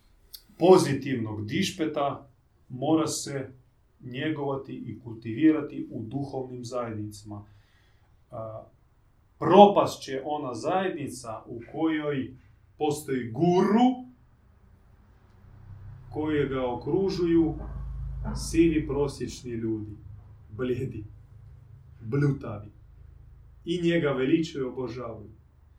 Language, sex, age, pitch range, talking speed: Croatian, male, 30-49, 110-150 Hz, 70 wpm